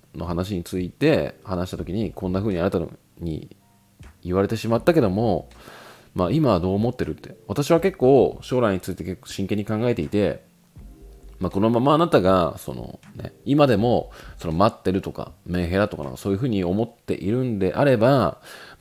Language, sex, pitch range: Japanese, male, 85-125 Hz